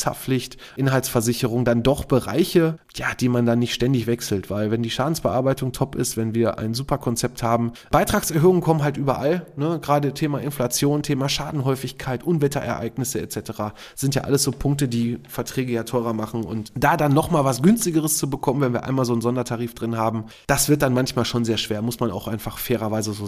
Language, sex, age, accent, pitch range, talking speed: German, male, 20-39, German, 115-140 Hz, 195 wpm